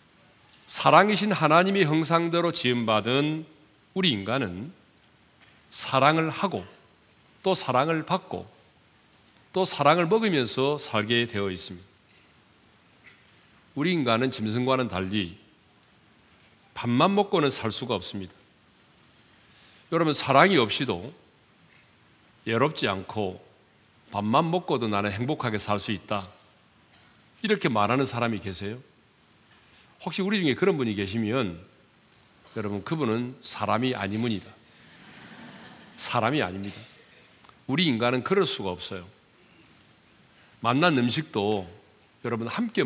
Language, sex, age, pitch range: Korean, male, 40-59, 105-150 Hz